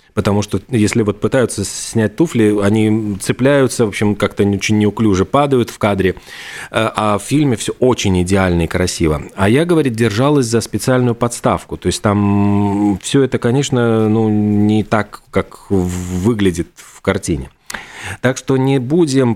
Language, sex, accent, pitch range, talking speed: Russian, male, native, 95-120 Hz, 155 wpm